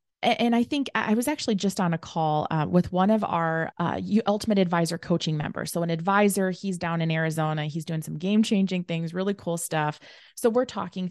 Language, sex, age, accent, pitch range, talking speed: English, female, 20-39, American, 175-255 Hz, 205 wpm